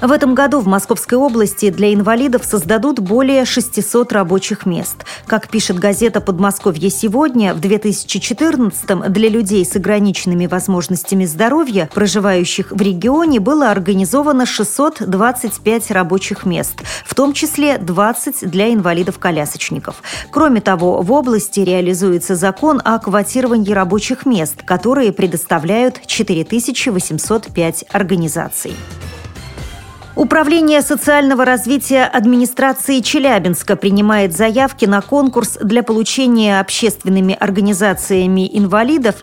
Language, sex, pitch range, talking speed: Russian, female, 190-245 Hz, 105 wpm